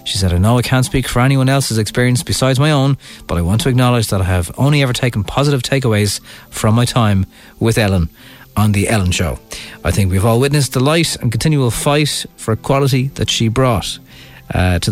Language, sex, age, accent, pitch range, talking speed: English, male, 30-49, Irish, 110-160 Hz, 215 wpm